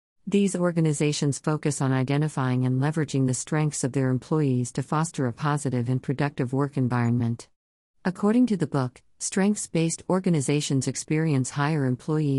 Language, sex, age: English, female, 50-69